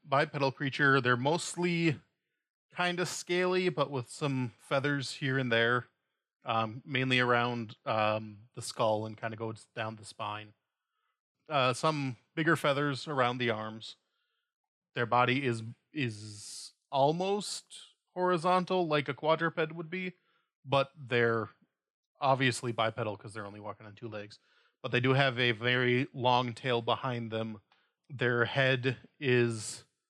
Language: English